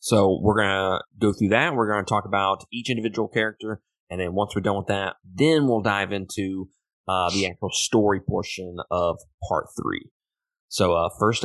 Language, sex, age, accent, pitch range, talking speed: English, male, 20-39, American, 95-115 Hz, 195 wpm